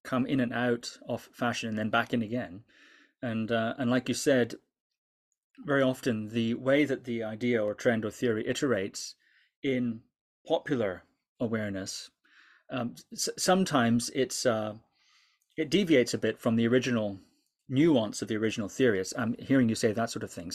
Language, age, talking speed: English, 30-49, 165 wpm